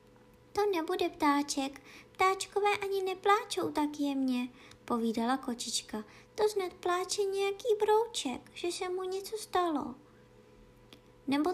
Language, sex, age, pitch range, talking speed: Czech, male, 20-39, 220-310 Hz, 110 wpm